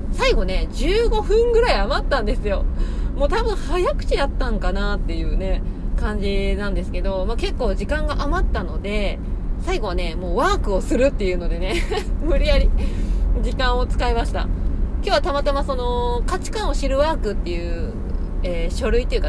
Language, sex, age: Japanese, female, 20-39